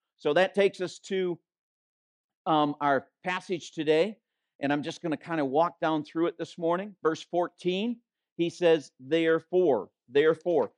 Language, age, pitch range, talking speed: English, 50-69, 155-195 Hz, 155 wpm